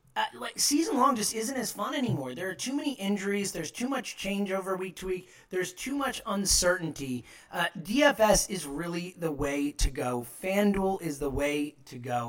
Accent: American